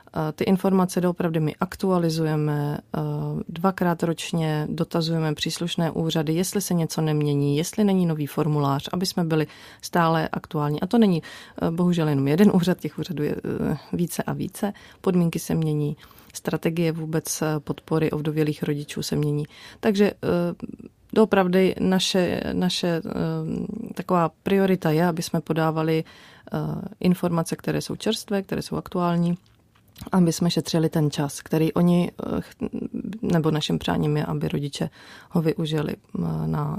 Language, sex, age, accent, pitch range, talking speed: Czech, female, 30-49, native, 155-190 Hz, 130 wpm